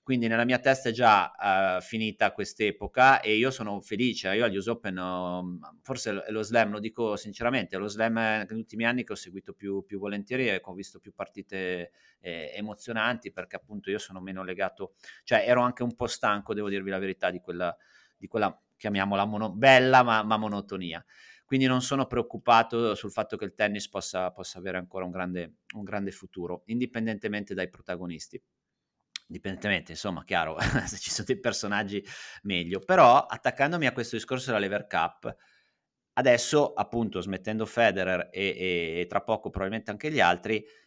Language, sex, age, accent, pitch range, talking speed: Italian, male, 30-49, native, 95-120 Hz, 170 wpm